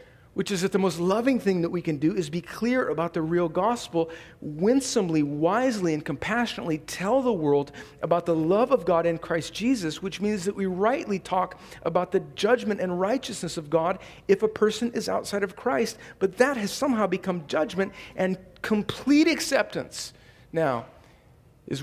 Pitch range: 120-170 Hz